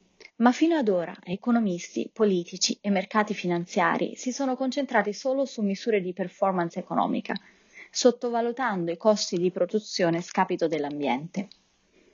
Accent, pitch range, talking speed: native, 185-245 Hz, 125 wpm